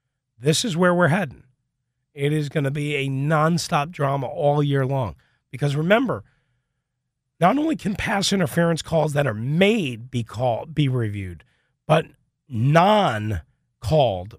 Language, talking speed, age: English, 135 wpm, 40-59